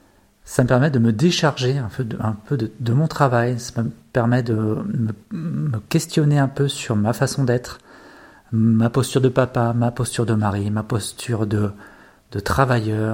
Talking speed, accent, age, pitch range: 185 wpm, French, 40-59, 110-145 Hz